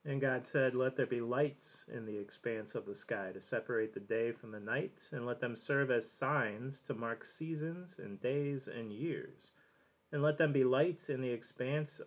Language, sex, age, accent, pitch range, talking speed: English, male, 30-49, American, 120-145 Hz, 205 wpm